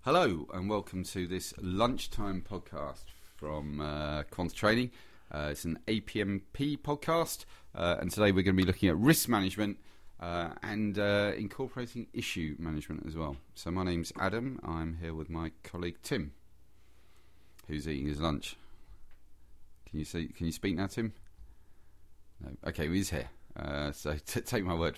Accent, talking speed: British, 160 wpm